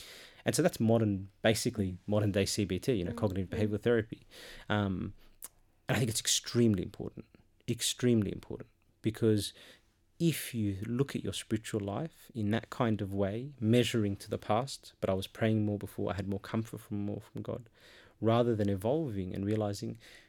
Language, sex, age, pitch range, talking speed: English, male, 30-49, 100-115 Hz, 165 wpm